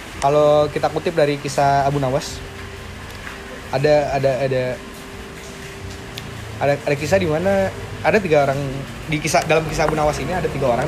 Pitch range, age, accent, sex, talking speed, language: 130-170 Hz, 20-39, native, male, 155 wpm, Indonesian